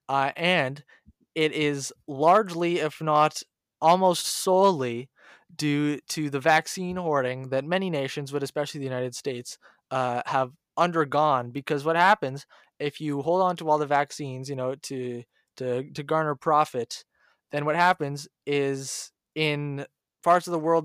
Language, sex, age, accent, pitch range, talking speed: English, male, 20-39, American, 135-155 Hz, 150 wpm